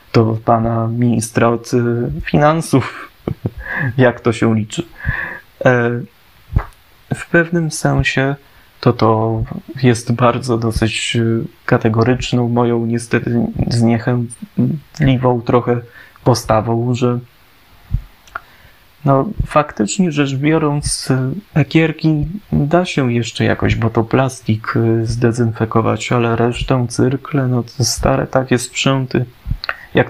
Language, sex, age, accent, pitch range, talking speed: Polish, male, 20-39, native, 115-135 Hz, 90 wpm